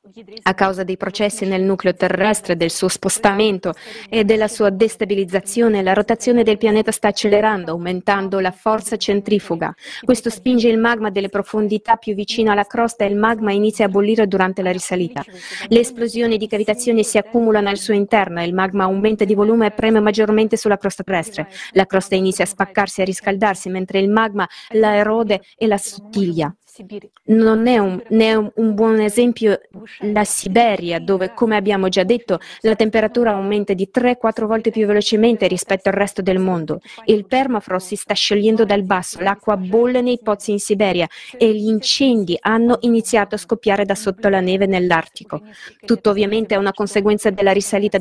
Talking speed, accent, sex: 175 wpm, native, female